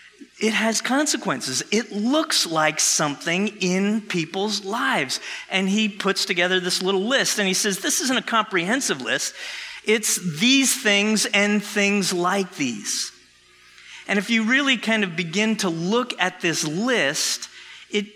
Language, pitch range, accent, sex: English, 145-225 Hz, American, male